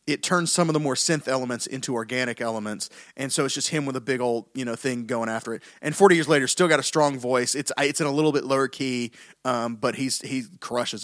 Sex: male